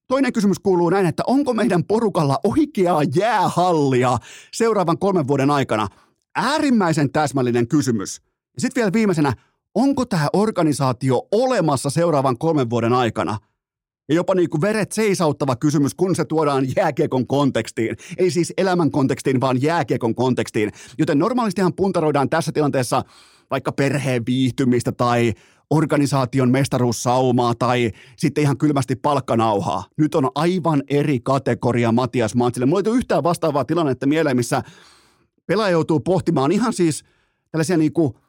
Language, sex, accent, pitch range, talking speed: Finnish, male, native, 130-175 Hz, 130 wpm